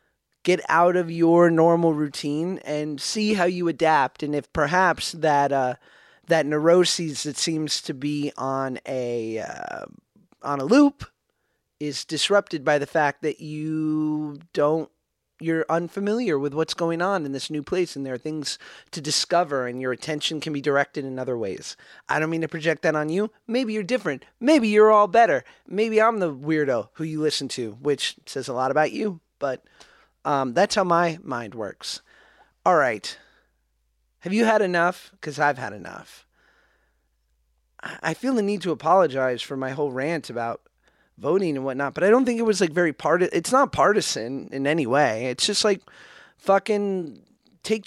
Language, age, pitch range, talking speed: English, 30-49, 135-180 Hz, 175 wpm